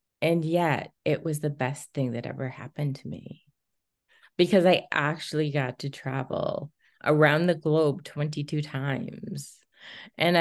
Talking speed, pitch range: 140 wpm, 145-180 Hz